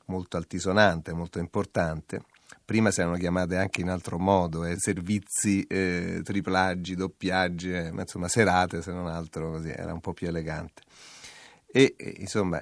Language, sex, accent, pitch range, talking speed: Italian, male, native, 90-105 Hz, 155 wpm